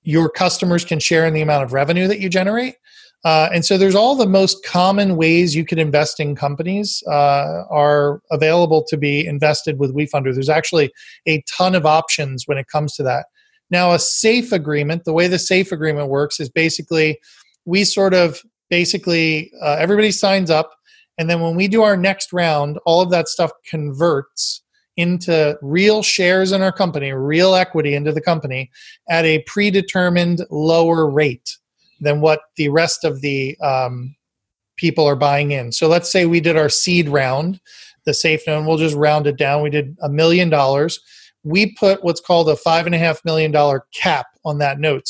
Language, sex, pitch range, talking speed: English, male, 150-185 Hz, 190 wpm